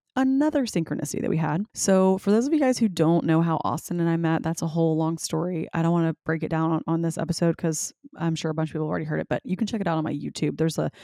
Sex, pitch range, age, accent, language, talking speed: female, 155-195 Hz, 20-39, American, English, 310 wpm